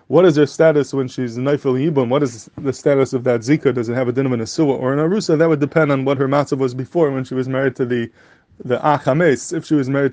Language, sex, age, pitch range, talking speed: English, male, 20-39, 130-150 Hz, 275 wpm